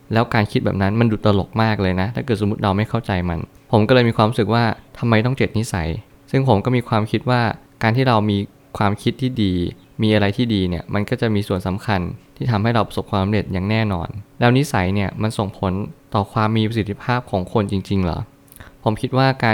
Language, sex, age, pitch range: Thai, male, 20-39, 100-120 Hz